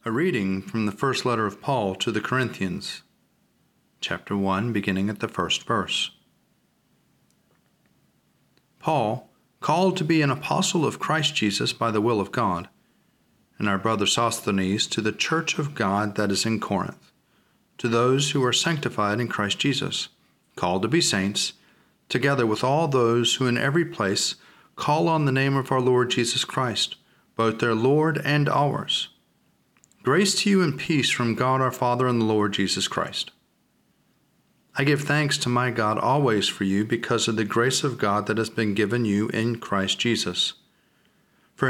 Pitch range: 110-140 Hz